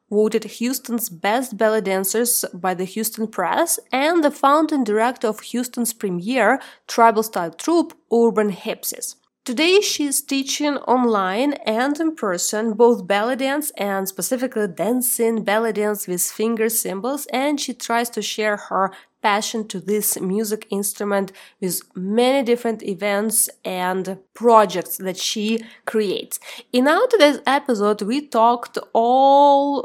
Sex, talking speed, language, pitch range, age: female, 130 wpm, English, 205-260 Hz, 20-39